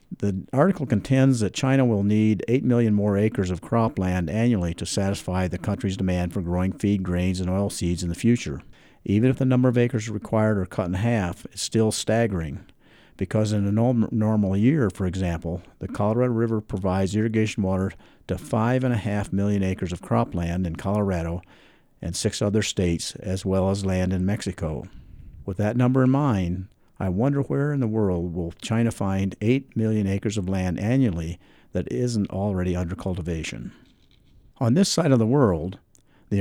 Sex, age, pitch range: male, 50-69, 95-115 Hz